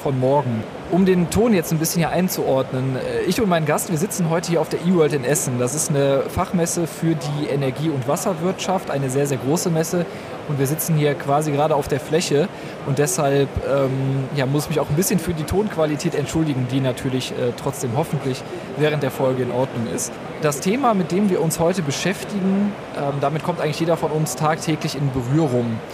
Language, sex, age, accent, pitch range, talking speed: German, male, 20-39, German, 140-180 Hz, 205 wpm